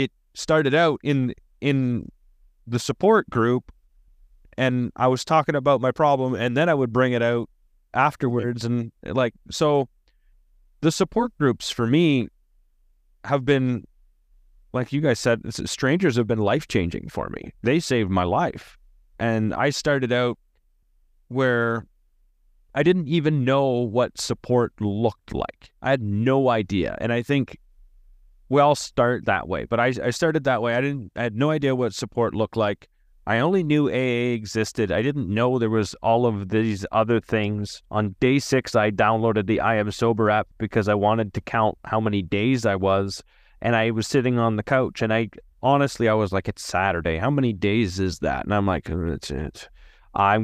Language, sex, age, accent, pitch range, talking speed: English, male, 30-49, American, 100-130 Hz, 175 wpm